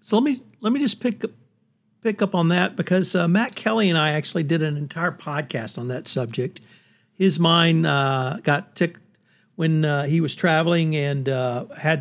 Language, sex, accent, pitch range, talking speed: English, male, American, 145-185 Hz, 195 wpm